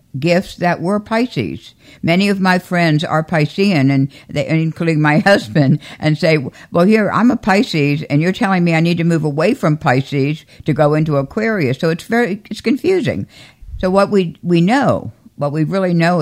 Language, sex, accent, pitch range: English, female, American, 140-180 Hz